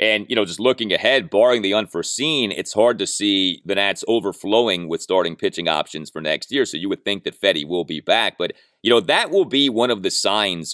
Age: 30-49